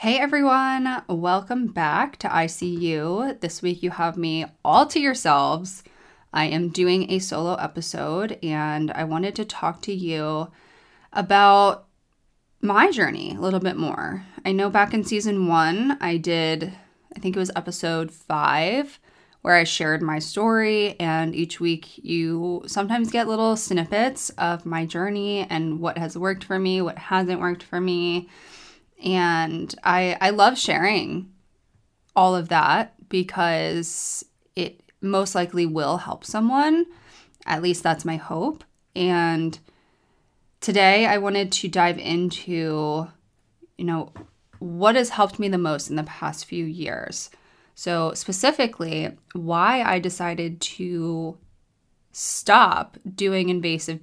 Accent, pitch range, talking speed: American, 165-200 Hz, 140 wpm